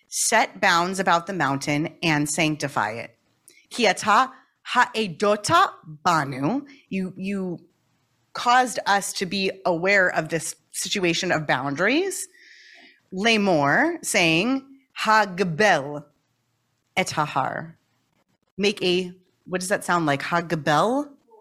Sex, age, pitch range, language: female, 30-49, 160-230 Hz, English